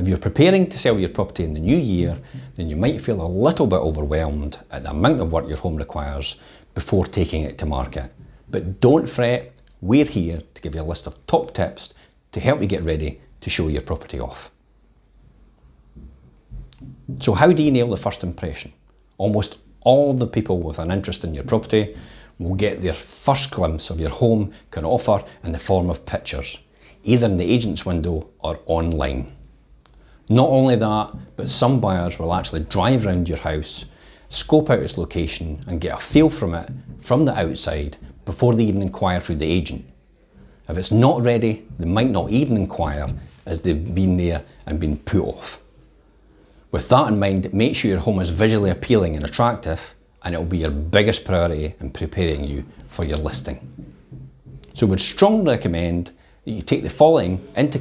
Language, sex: English, male